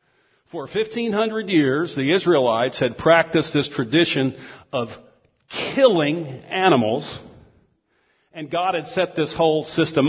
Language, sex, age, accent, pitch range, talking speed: English, male, 50-69, American, 145-195 Hz, 115 wpm